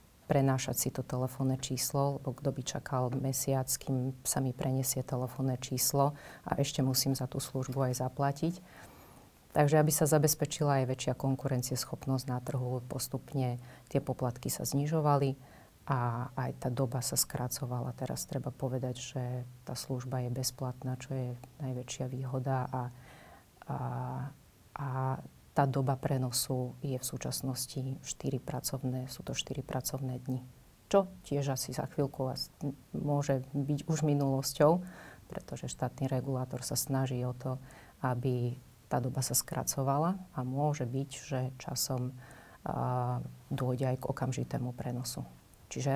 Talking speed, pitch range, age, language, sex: 135 wpm, 130-140 Hz, 30-49, Slovak, female